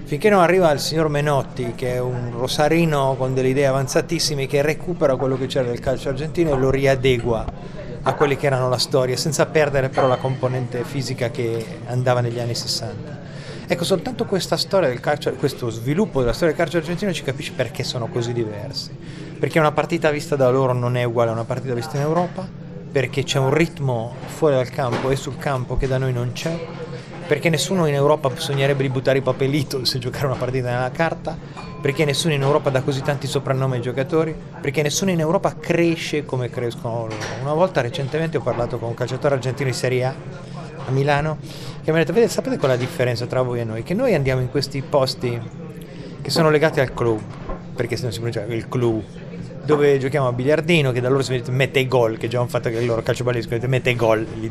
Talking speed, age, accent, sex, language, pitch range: 210 wpm, 30-49, native, male, Italian, 125-155 Hz